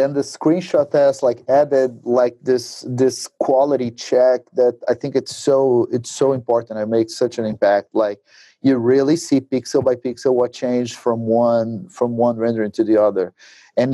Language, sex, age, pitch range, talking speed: English, male, 30-49, 115-135 Hz, 180 wpm